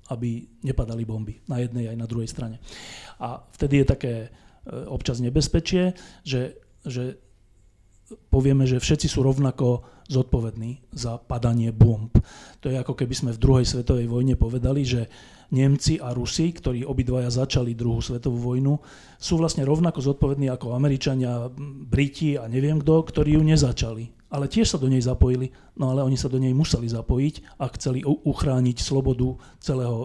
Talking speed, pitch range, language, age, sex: 160 wpm, 120-140 Hz, Slovak, 40-59, male